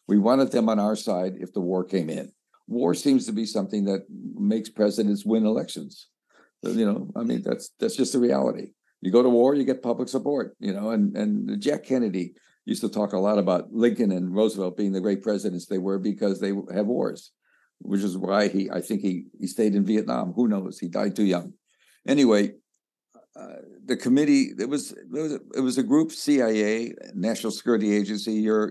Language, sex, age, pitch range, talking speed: English, male, 60-79, 95-120 Hz, 200 wpm